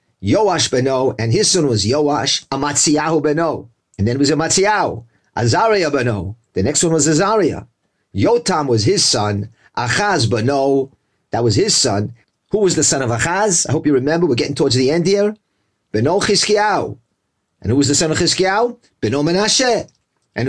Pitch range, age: 120-195 Hz, 40-59